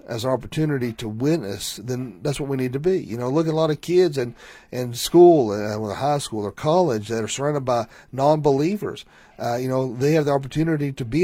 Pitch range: 120-165 Hz